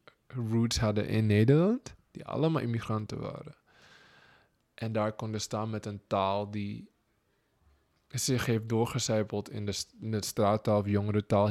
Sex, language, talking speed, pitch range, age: male, Dutch, 135 wpm, 105-125 Hz, 20-39